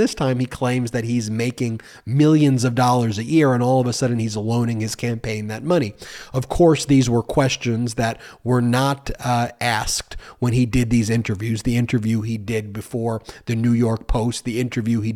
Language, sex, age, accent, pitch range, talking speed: English, male, 30-49, American, 115-130 Hz, 200 wpm